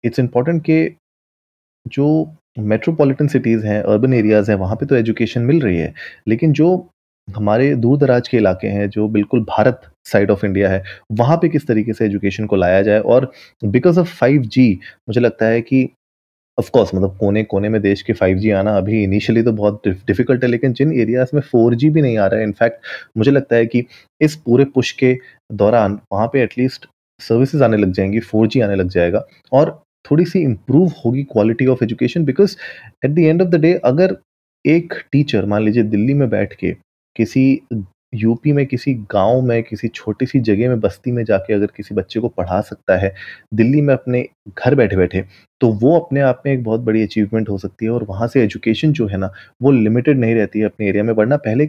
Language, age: Hindi, 30-49